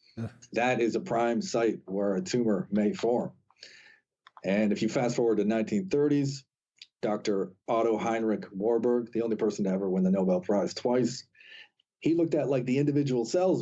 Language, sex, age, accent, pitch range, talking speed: English, male, 40-59, American, 110-135 Hz, 170 wpm